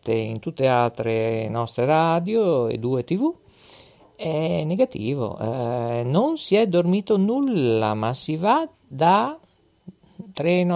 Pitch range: 135-195 Hz